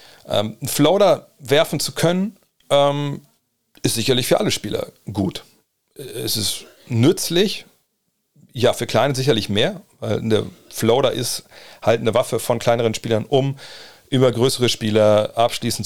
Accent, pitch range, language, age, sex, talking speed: German, 105-130 Hz, German, 40-59, male, 135 wpm